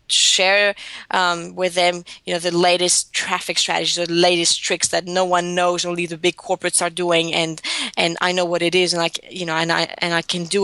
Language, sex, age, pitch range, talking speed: English, female, 20-39, 170-195 Hz, 225 wpm